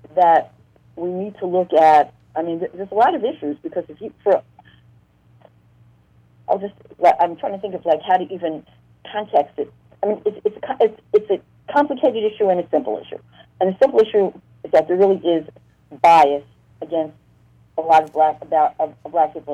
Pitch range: 140-185 Hz